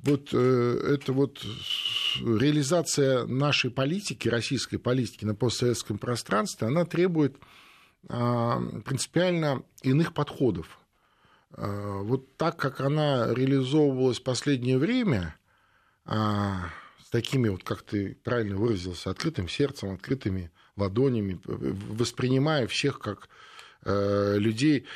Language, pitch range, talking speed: Russian, 105-135 Hz, 95 wpm